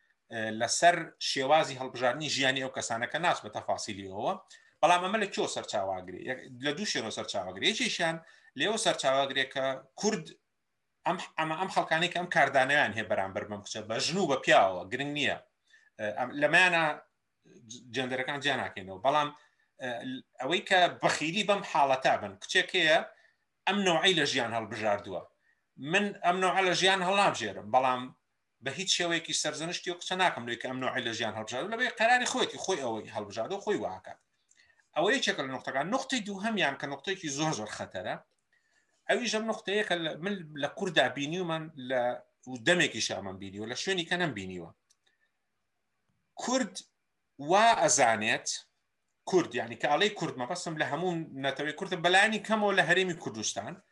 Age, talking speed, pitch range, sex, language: 30-49, 120 wpm, 130-190 Hz, male, Persian